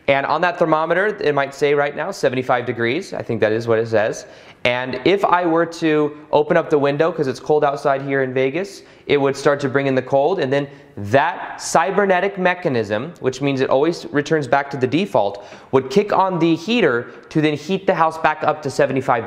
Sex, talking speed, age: male, 220 wpm, 20-39